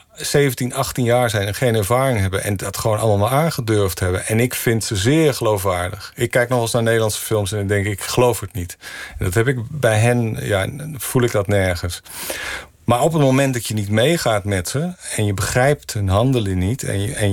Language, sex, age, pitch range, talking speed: Dutch, male, 50-69, 100-120 Hz, 225 wpm